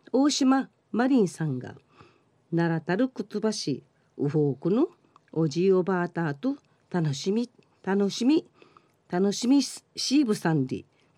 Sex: female